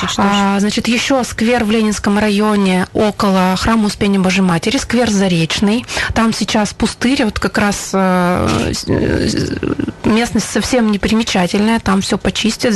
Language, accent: Russian, native